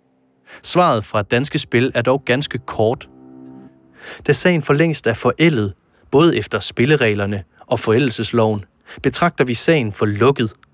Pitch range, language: 105-145 Hz, Danish